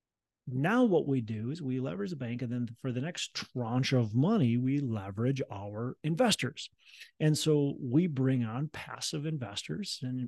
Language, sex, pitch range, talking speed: English, male, 115-150 Hz, 170 wpm